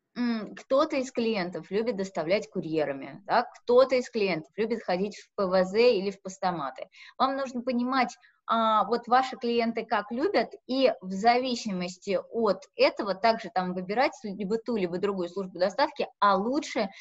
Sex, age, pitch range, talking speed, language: female, 20-39, 185-245 Hz, 140 wpm, Russian